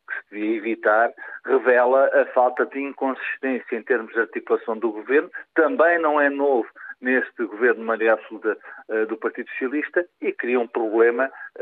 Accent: Portuguese